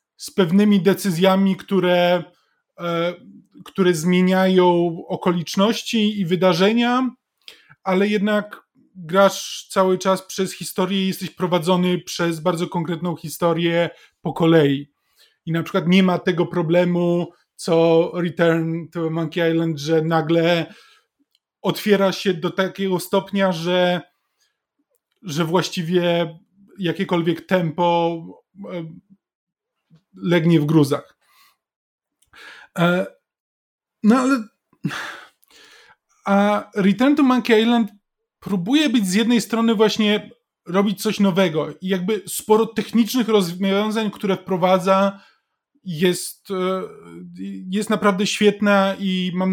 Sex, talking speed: male, 100 wpm